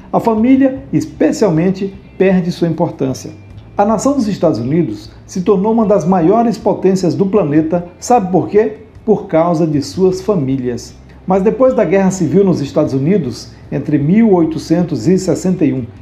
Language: Portuguese